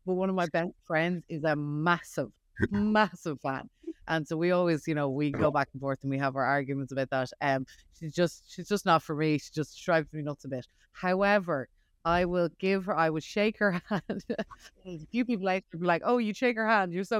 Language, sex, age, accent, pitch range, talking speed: English, female, 20-39, Irish, 145-185 Hz, 235 wpm